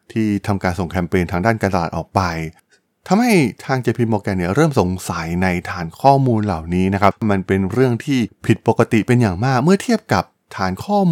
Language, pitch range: Thai, 95-120 Hz